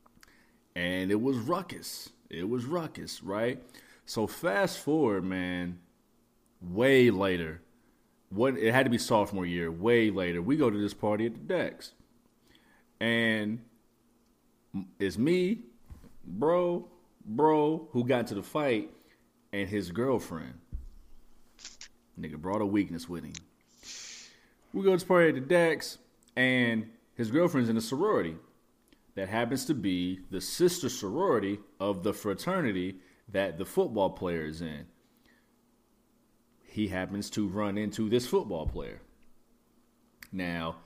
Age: 30-49